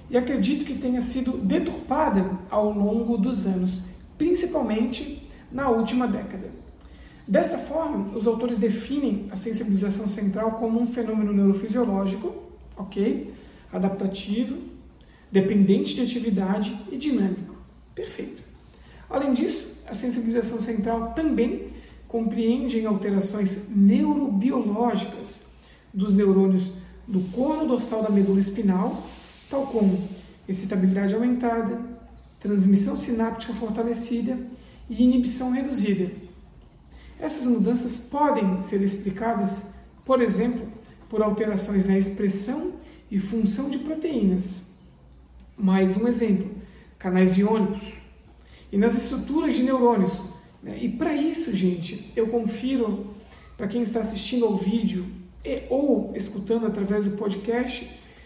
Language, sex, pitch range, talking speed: Portuguese, male, 200-245 Hz, 105 wpm